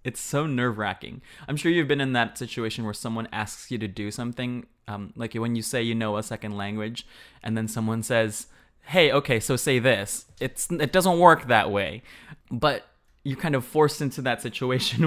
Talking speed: 195 wpm